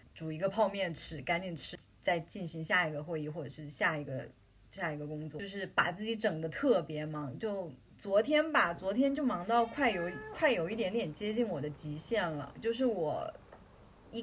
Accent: native